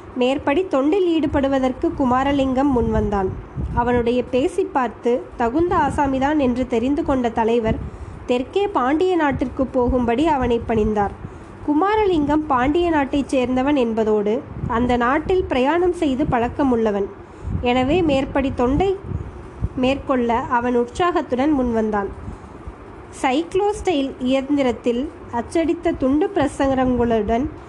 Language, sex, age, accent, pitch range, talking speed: Tamil, female, 20-39, native, 245-315 Hz, 90 wpm